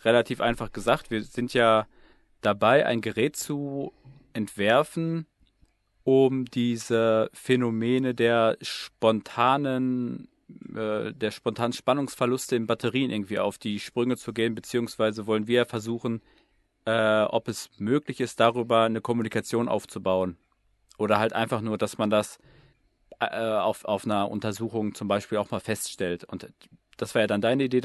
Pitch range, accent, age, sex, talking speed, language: 110-125 Hz, German, 40-59, male, 140 wpm, German